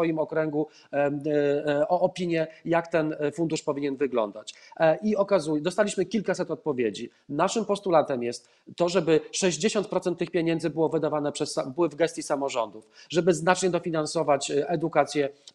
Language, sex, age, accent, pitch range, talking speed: Polish, male, 40-59, native, 145-180 Hz, 130 wpm